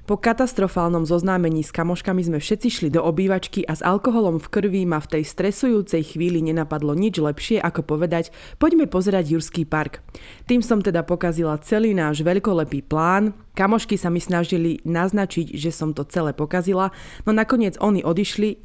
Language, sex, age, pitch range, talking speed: Slovak, female, 20-39, 160-195 Hz, 165 wpm